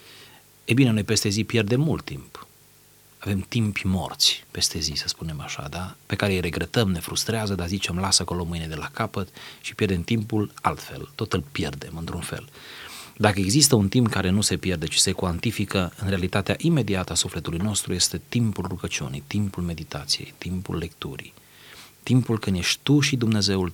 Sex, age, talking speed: male, 30-49, 175 wpm